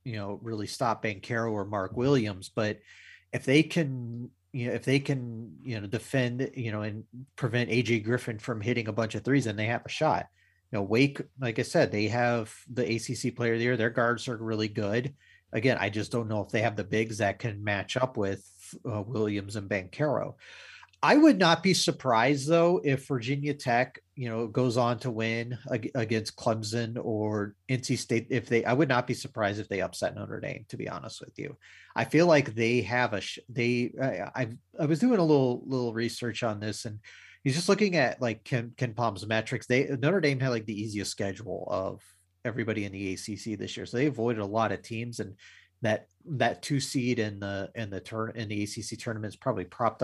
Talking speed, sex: 215 wpm, male